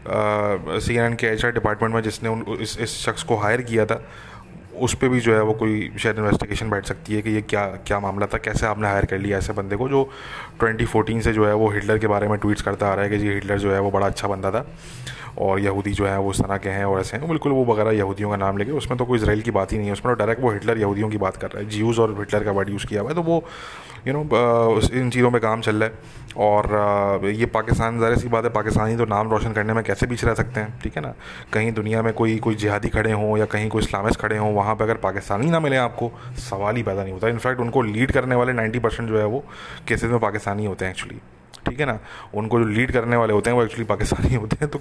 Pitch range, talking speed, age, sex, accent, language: 105-115 Hz, 165 wpm, 20-39, male, Indian, English